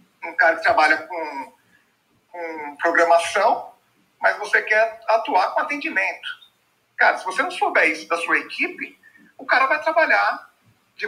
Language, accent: Portuguese, Brazilian